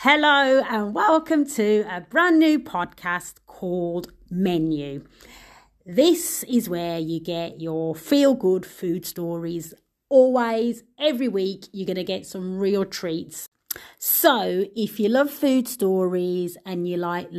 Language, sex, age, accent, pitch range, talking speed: English, female, 30-49, British, 170-225 Hz, 130 wpm